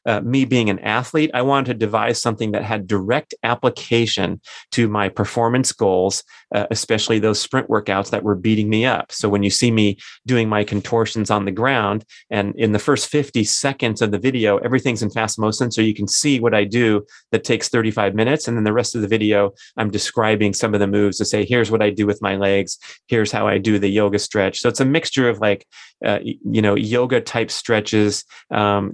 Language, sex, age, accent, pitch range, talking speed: English, male, 30-49, American, 105-120 Hz, 220 wpm